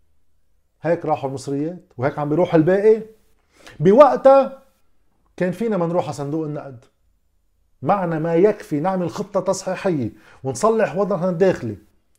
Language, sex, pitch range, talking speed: Arabic, male, 125-190 Hz, 115 wpm